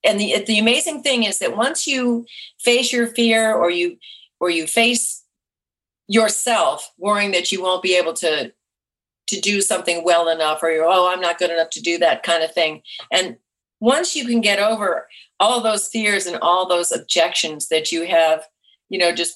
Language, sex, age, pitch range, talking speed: English, female, 50-69, 165-215 Hz, 190 wpm